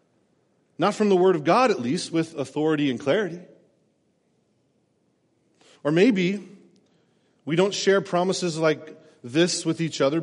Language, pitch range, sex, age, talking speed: English, 135-180 Hz, male, 40-59, 135 wpm